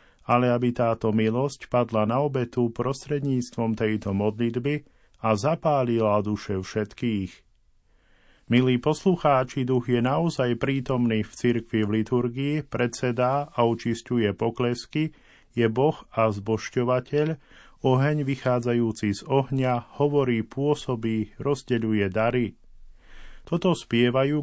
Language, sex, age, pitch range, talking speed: Slovak, male, 40-59, 110-130 Hz, 105 wpm